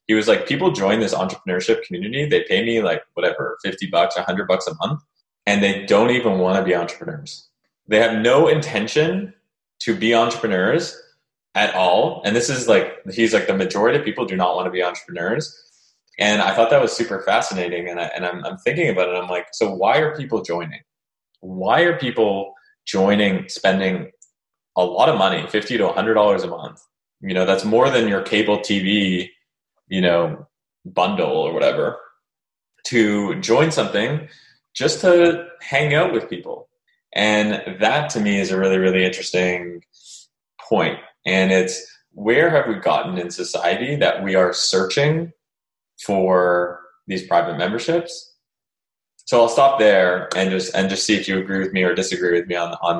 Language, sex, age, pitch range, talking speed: English, male, 20-39, 90-145 Hz, 180 wpm